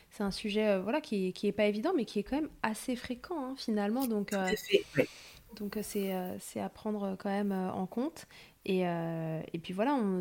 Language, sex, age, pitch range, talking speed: French, female, 20-39, 190-215 Hz, 235 wpm